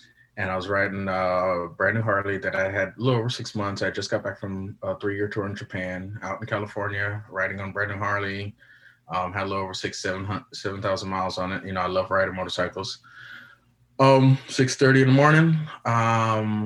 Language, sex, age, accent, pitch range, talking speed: English, male, 20-39, American, 95-115 Hz, 215 wpm